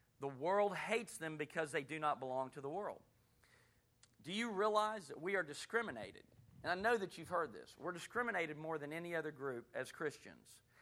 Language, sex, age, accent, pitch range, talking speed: English, male, 40-59, American, 150-190 Hz, 195 wpm